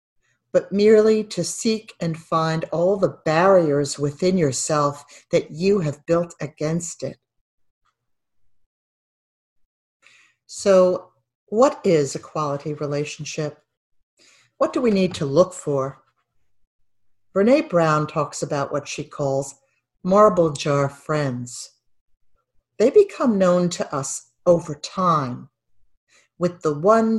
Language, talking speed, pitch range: English, 110 wpm, 140-185 Hz